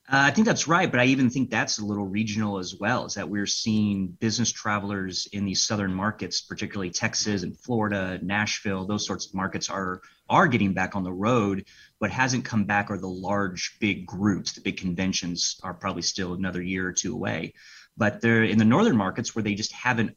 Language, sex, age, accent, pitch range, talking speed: English, male, 30-49, American, 95-110 Hz, 210 wpm